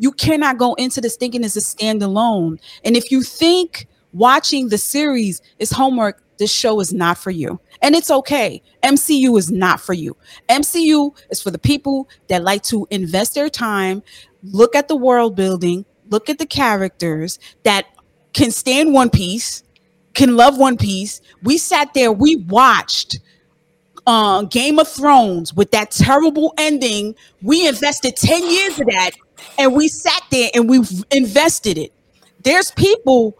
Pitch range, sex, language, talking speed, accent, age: 220-305 Hz, female, English, 160 wpm, American, 30-49